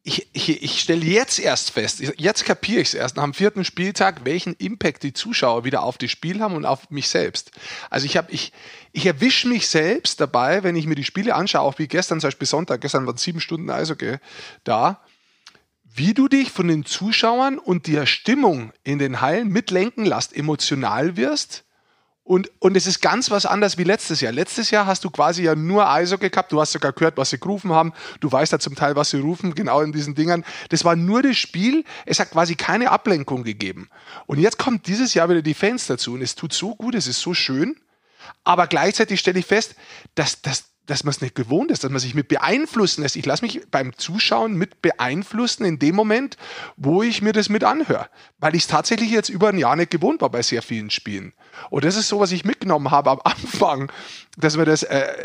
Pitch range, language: 150-210 Hz, German